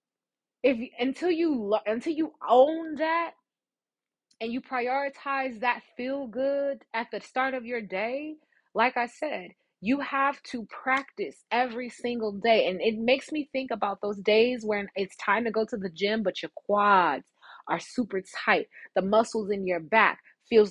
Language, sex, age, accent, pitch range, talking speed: English, female, 20-39, American, 205-260 Hz, 165 wpm